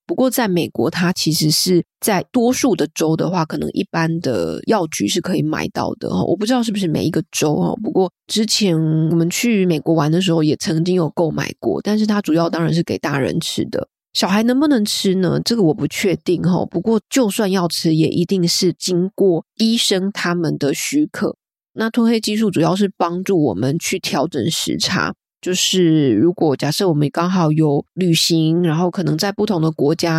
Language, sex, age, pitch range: Chinese, female, 20-39, 160-195 Hz